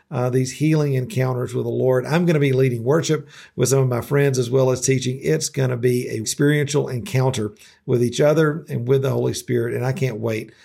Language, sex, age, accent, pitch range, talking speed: English, male, 50-69, American, 125-155 Hz, 230 wpm